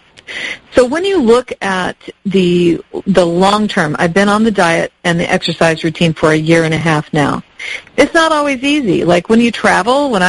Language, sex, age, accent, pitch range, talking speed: English, female, 50-69, American, 170-215 Hz, 190 wpm